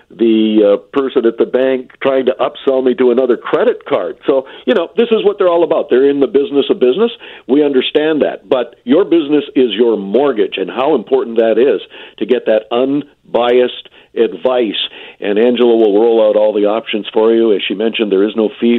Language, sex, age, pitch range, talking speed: English, male, 50-69, 125-160 Hz, 210 wpm